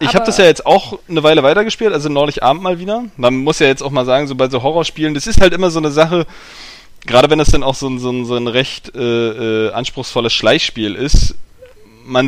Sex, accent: male, German